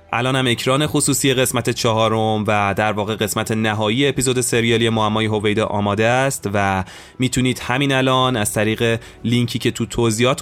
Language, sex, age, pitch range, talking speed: Persian, male, 20-39, 105-125 Hz, 150 wpm